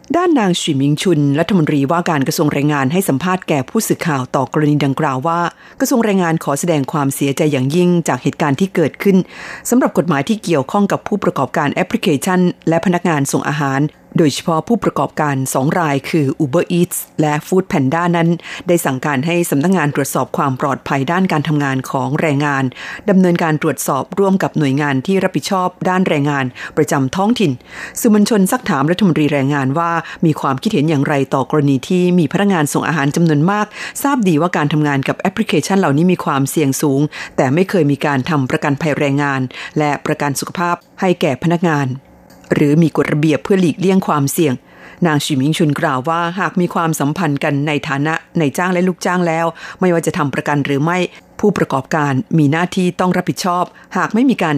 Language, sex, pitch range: Thai, female, 145-180 Hz